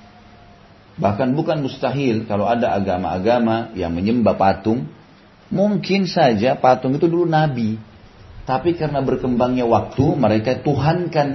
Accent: native